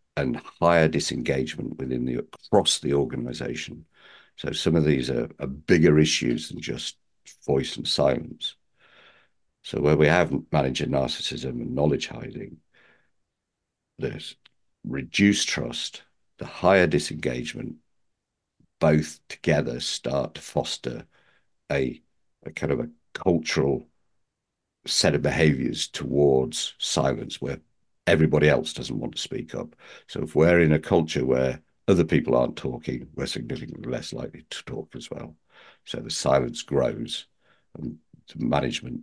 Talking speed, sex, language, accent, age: 130 wpm, male, English, British, 60-79